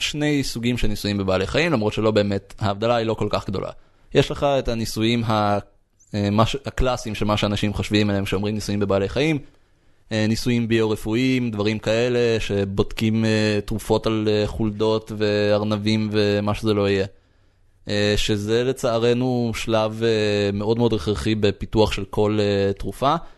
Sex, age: male, 20-39